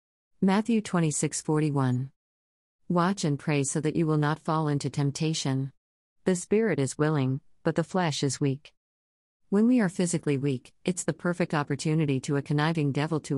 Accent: American